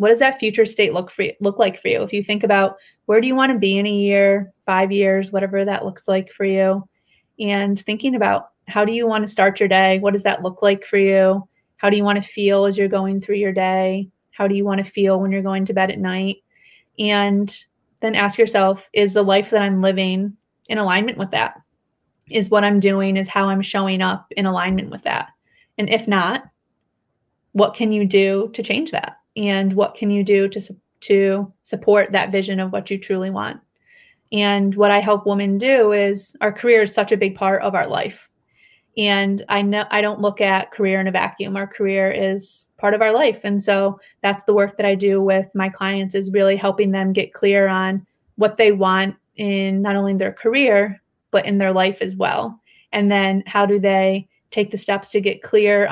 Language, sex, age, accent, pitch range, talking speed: English, female, 30-49, American, 195-210 Hz, 220 wpm